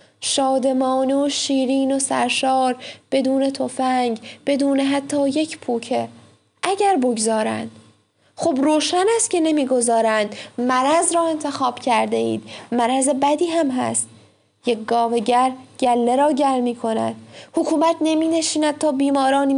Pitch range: 230-275 Hz